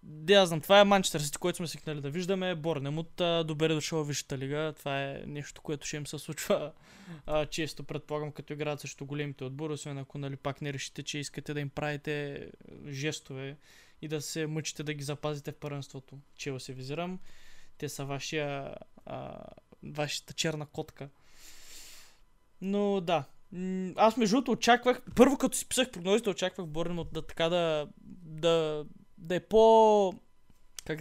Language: Bulgarian